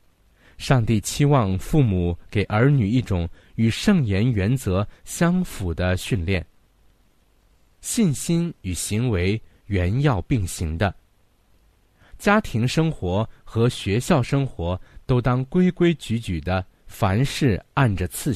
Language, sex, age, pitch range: Chinese, male, 50-69, 95-130 Hz